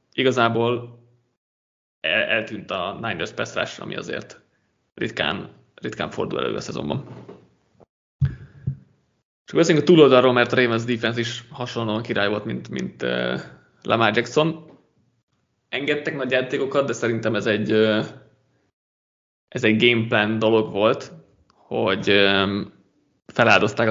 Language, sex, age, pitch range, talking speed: Hungarian, male, 20-39, 105-135 Hz, 115 wpm